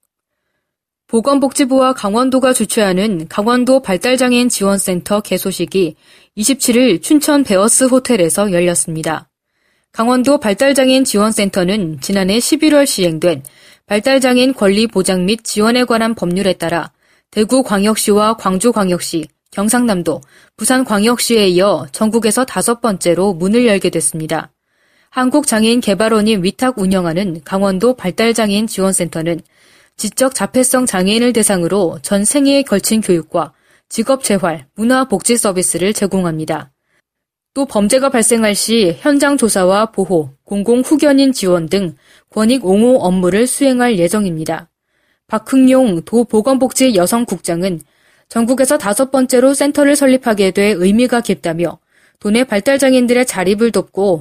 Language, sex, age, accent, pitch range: Korean, female, 20-39, native, 185-250 Hz